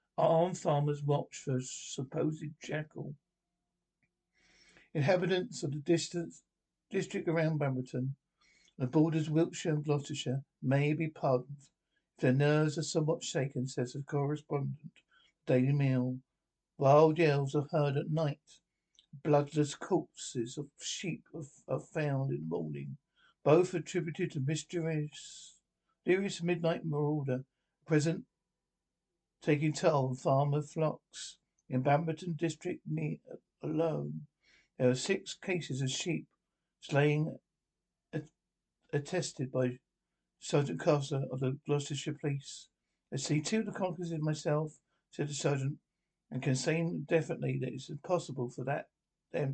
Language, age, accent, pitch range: English, 60-79, British, 140-165 Hz